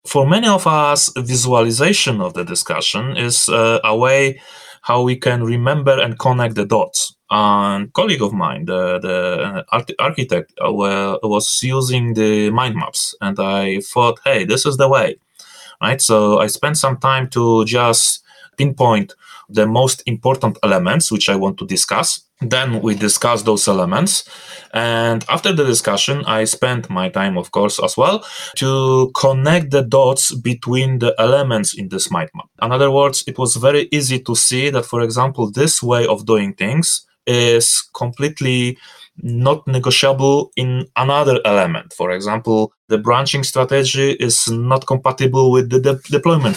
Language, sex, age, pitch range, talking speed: English, male, 20-39, 115-140 Hz, 160 wpm